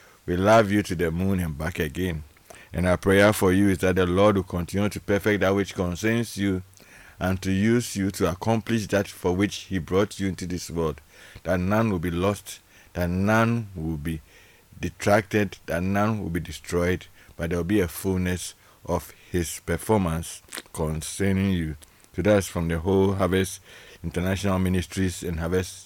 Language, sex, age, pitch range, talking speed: English, male, 50-69, 80-100 Hz, 185 wpm